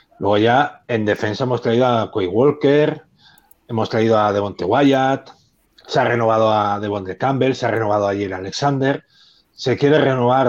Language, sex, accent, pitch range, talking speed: Spanish, male, Spanish, 110-135 Hz, 170 wpm